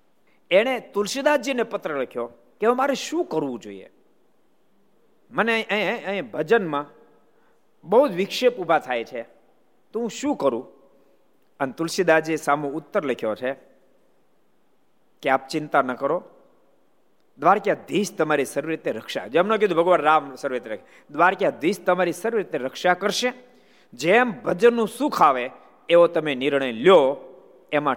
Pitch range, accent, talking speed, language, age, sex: 140-225 Hz, native, 80 wpm, Gujarati, 50-69, male